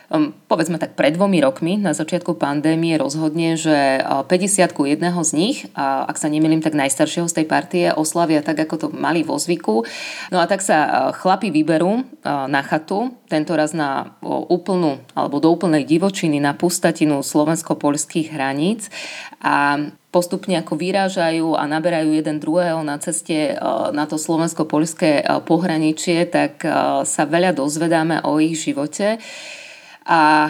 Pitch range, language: 155-180 Hz, Slovak